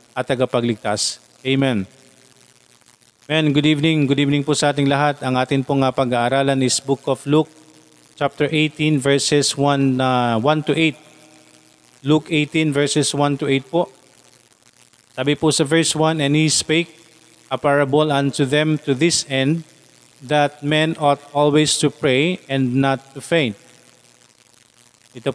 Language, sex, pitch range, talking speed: Filipino, male, 130-155 Hz, 145 wpm